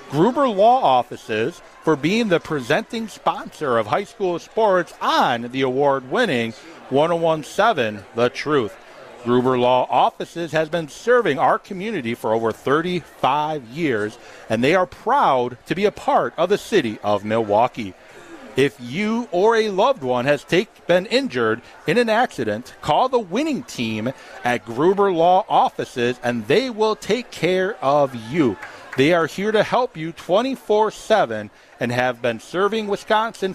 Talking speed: 150 wpm